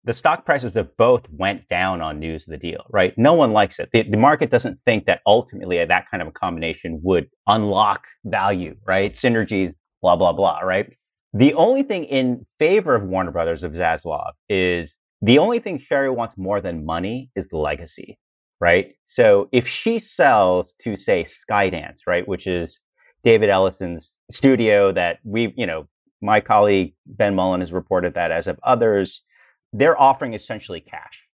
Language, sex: English, male